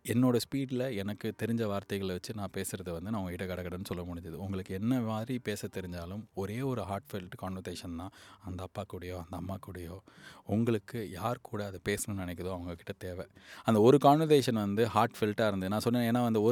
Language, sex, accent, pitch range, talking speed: Tamil, male, native, 95-115 Hz, 180 wpm